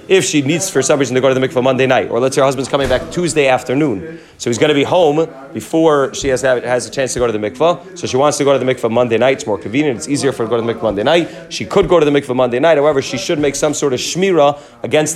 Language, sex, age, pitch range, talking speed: English, male, 30-49, 125-155 Hz, 320 wpm